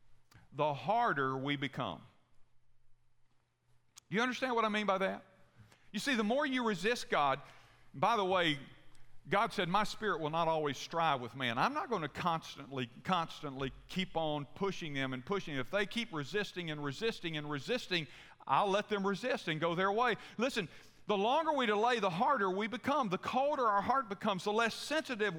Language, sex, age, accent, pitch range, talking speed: English, male, 50-69, American, 155-230 Hz, 180 wpm